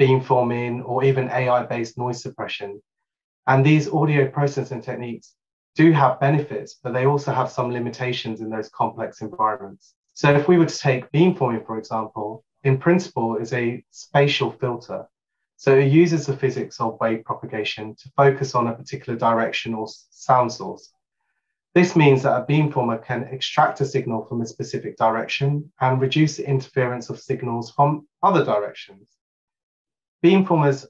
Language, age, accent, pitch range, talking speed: English, 30-49, British, 115-140 Hz, 155 wpm